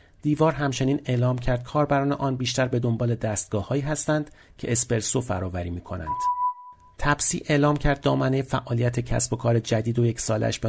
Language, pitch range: Persian, 110-140 Hz